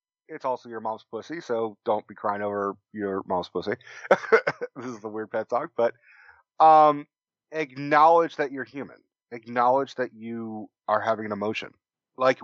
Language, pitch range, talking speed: English, 100-135 Hz, 160 wpm